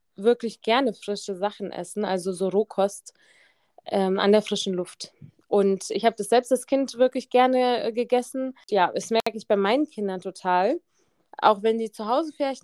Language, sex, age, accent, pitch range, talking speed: German, female, 20-39, German, 200-250 Hz, 180 wpm